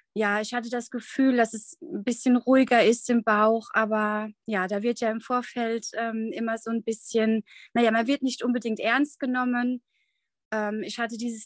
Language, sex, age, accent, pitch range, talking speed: German, female, 20-39, German, 210-250 Hz, 190 wpm